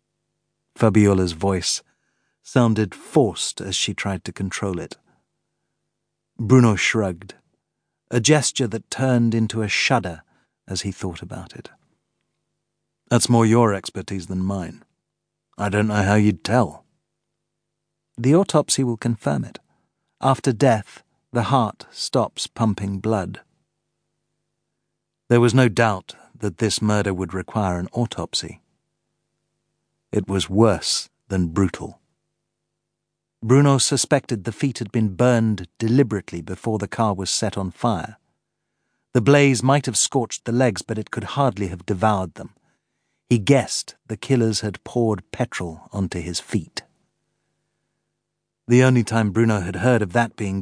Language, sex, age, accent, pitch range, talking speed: English, male, 40-59, British, 100-125 Hz, 135 wpm